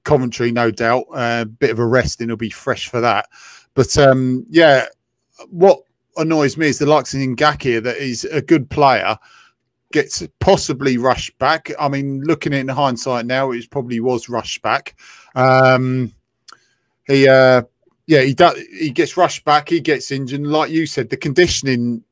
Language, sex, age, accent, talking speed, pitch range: English, male, 30-49, British, 180 wpm, 125-150 Hz